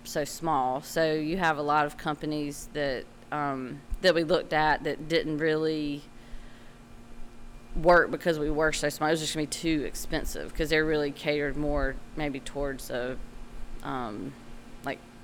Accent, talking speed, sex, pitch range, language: American, 165 wpm, female, 130-155 Hz, English